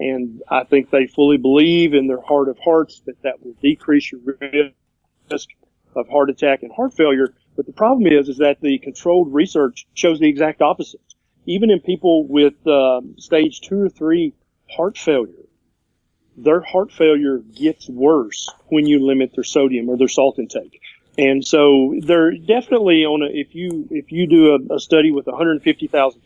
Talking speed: 175 wpm